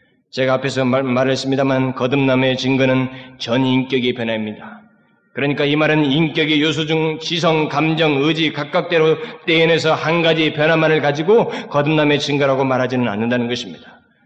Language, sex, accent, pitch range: Korean, male, native, 155-215 Hz